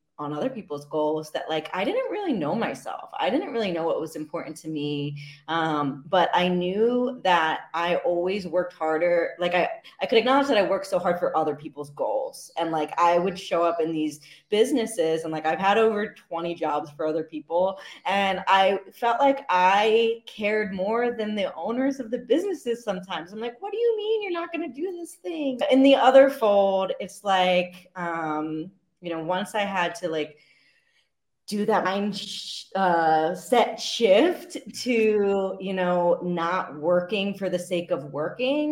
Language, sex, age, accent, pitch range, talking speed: English, female, 20-39, American, 155-205 Hz, 185 wpm